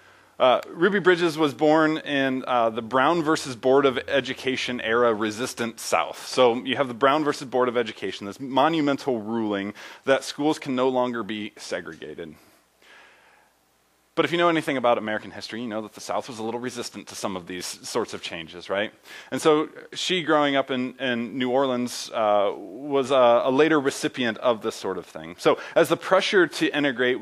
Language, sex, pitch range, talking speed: English, male, 110-145 Hz, 185 wpm